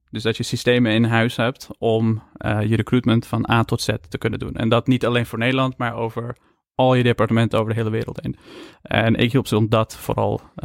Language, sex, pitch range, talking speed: Dutch, male, 115-125 Hz, 230 wpm